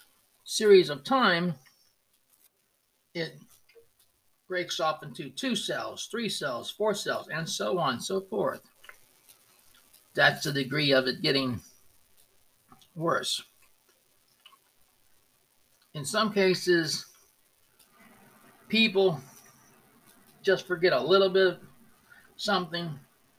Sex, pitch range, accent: male, 140-185 Hz, American